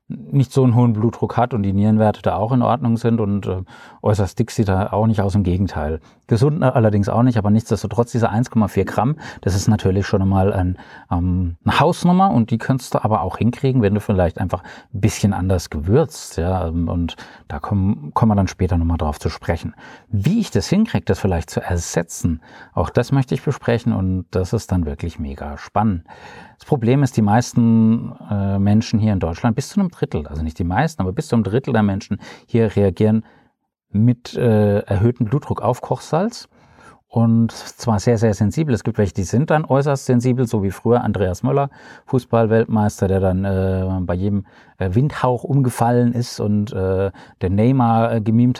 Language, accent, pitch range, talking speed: German, German, 100-120 Hz, 185 wpm